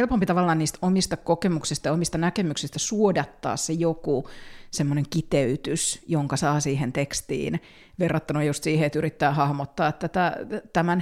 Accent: native